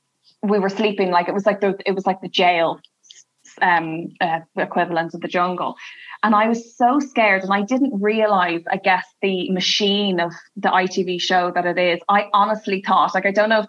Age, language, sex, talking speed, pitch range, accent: 20-39, English, female, 205 wpm, 185-220 Hz, Irish